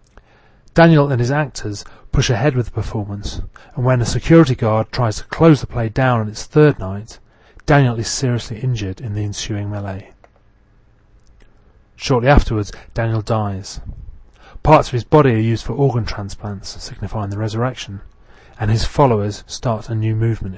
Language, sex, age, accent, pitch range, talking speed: English, male, 30-49, British, 100-130 Hz, 160 wpm